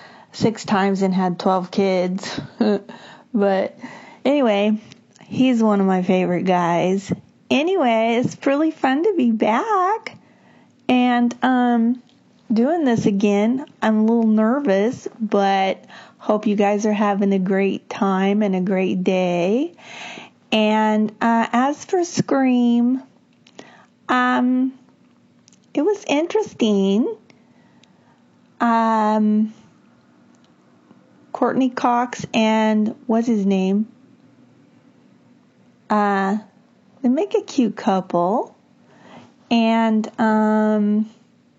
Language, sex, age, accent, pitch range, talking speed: English, female, 30-49, American, 195-245 Hz, 95 wpm